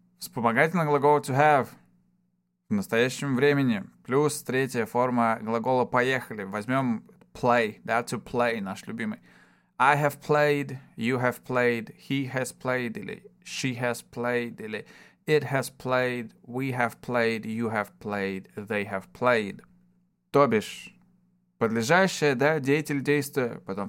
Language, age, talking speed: Russian, 20-39, 130 wpm